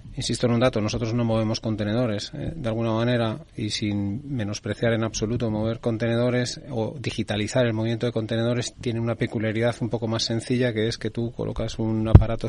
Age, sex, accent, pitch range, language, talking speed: 30-49, male, Spanish, 110-125 Hz, Spanish, 185 wpm